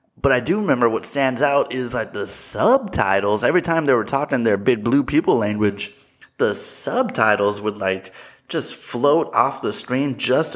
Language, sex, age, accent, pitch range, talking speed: English, male, 20-39, American, 105-135 Hz, 175 wpm